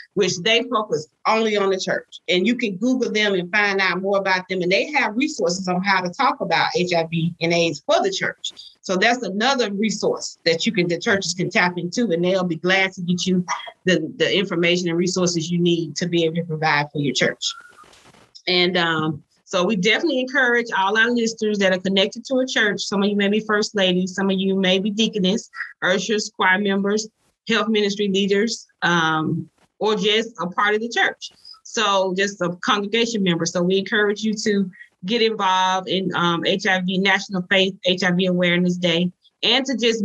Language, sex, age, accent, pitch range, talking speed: English, female, 30-49, American, 180-220 Hz, 200 wpm